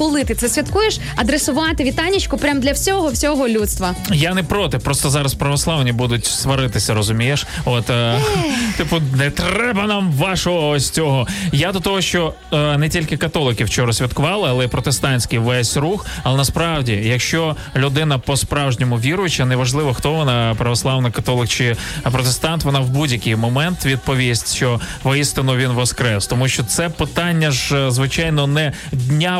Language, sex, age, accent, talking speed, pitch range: Ukrainian, male, 20-39, native, 145 wpm, 125-160 Hz